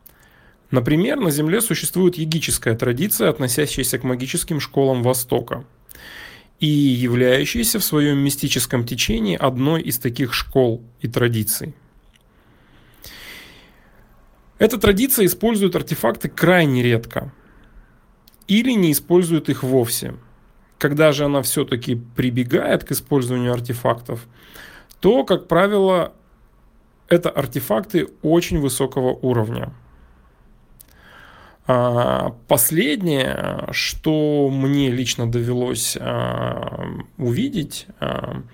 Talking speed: 85 wpm